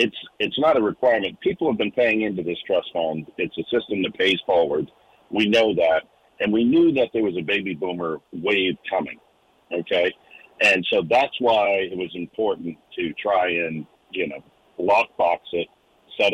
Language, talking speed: English, 180 wpm